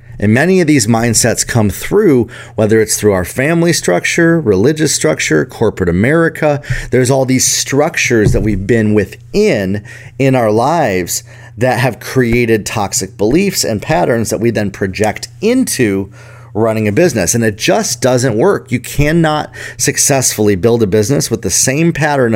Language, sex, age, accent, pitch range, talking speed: English, male, 30-49, American, 110-130 Hz, 155 wpm